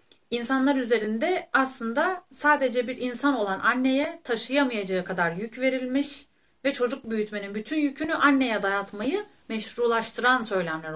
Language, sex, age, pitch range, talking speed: Turkish, female, 30-49, 210-295 Hz, 115 wpm